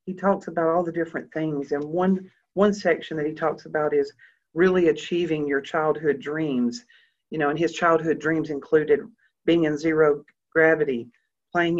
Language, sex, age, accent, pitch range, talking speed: English, female, 40-59, American, 150-180 Hz, 170 wpm